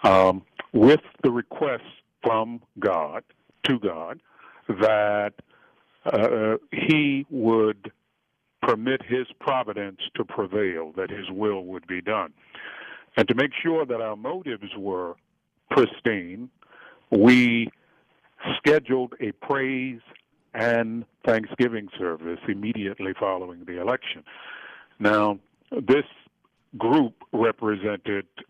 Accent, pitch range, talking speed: American, 100-120 Hz, 100 wpm